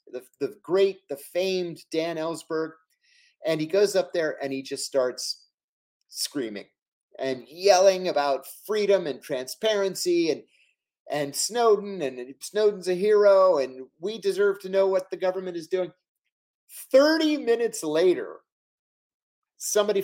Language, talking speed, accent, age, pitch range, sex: English, 130 wpm, American, 30-49, 135-205 Hz, male